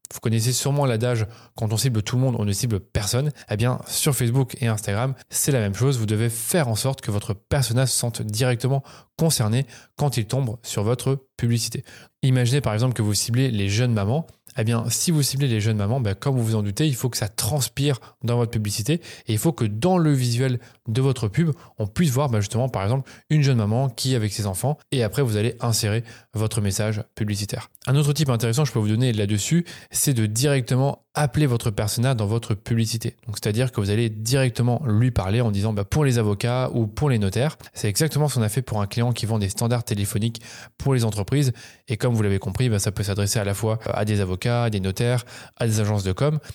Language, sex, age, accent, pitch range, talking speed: French, male, 20-39, French, 110-130 Hz, 235 wpm